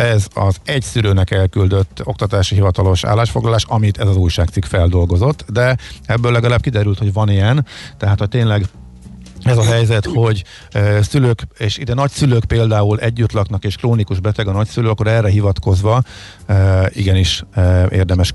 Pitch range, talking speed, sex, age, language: 90-105 Hz, 145 wpm, male, 50-69, Hungarian